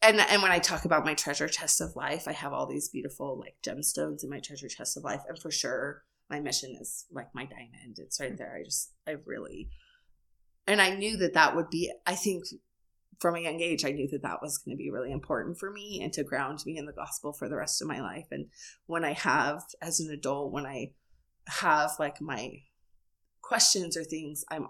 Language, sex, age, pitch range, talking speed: English, female, 20-39, 150-190 Hz, 240 wpm